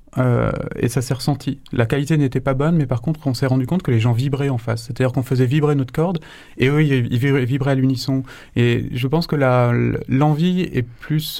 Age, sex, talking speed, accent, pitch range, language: 30-49, male, 225 wpm, French, 120-140 Hz, French